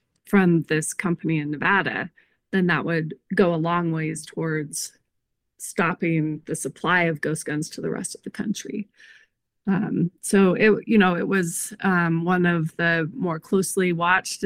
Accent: American